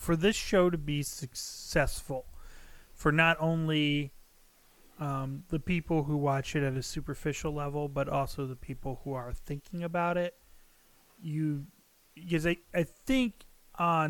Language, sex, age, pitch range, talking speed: English, male, 30-49, 130-160 Hz, 145 wpm